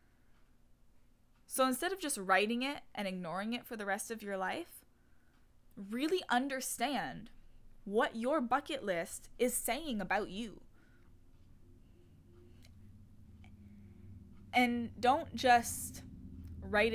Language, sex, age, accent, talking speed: English, female, 10-29, American, 105 wpm